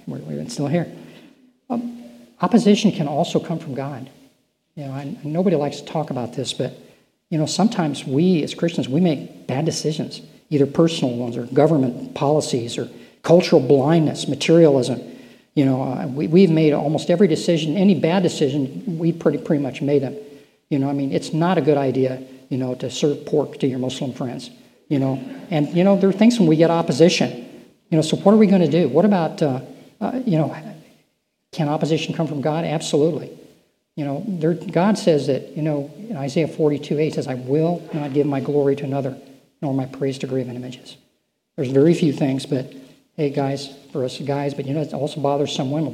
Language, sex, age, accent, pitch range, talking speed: English, male, 50-69, American, 135-165 Hz, 195 wpm